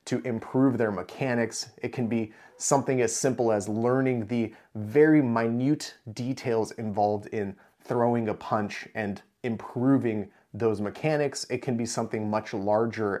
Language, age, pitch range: English, 30-49, 110-130 Hz